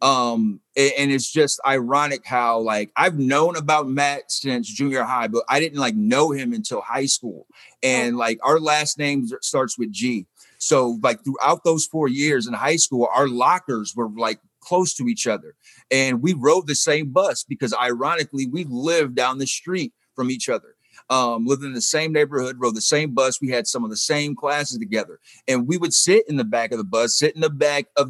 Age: 30-49